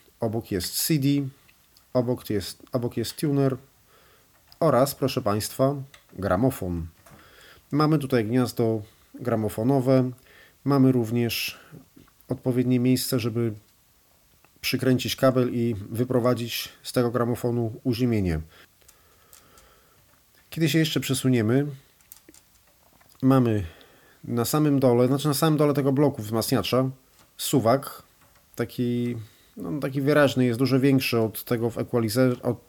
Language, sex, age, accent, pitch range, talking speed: Polish, male, 40-59, native, 110-135 Hz, 105 wpm